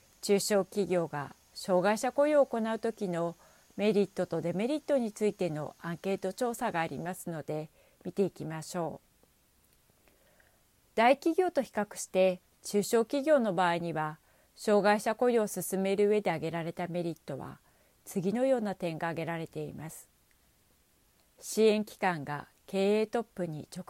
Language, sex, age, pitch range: Japanese, female, 40-59, 170-220 Hz